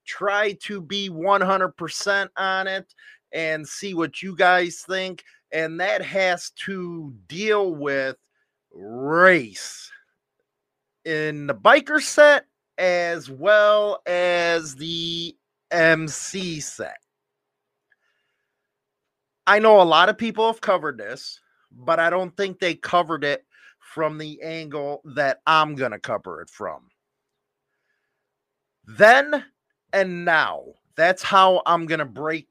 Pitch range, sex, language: 145-195 Hz, male, English